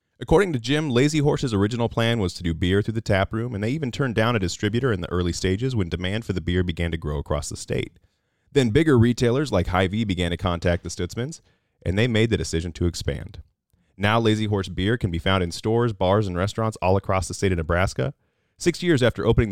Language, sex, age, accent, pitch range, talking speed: English, male, 30-49, American, 85-115 Hz, 230 wpm